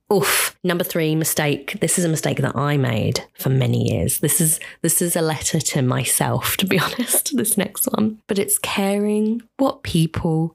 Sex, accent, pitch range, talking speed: female, British, 140-185 Hz, 190 wpm